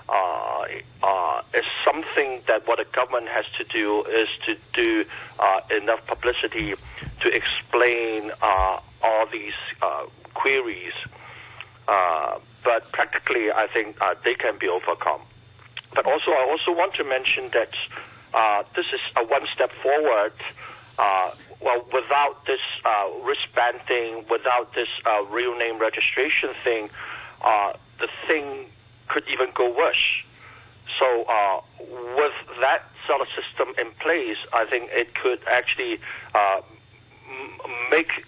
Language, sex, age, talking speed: English, male, 50-69, 135 wpm